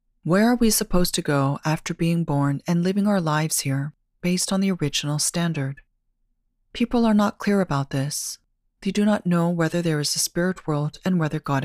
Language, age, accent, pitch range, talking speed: English, 30-49, American, 140-190 Hz, 195 wpm